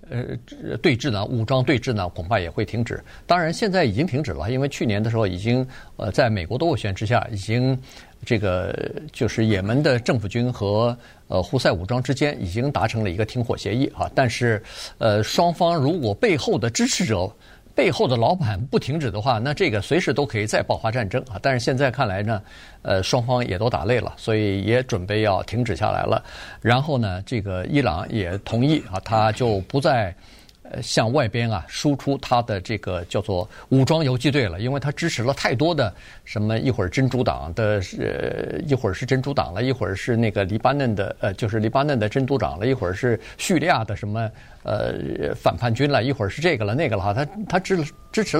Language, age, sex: Chinese, 50-69, male